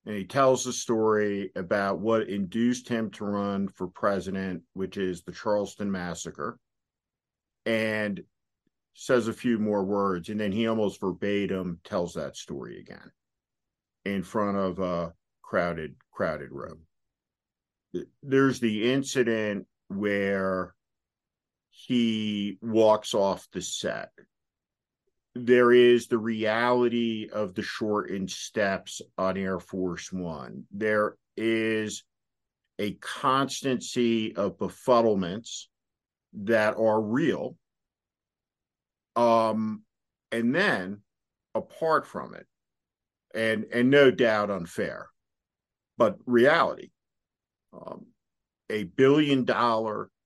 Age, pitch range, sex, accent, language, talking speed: 50-69, 95-115 Hz, male, American, English, 105 wpm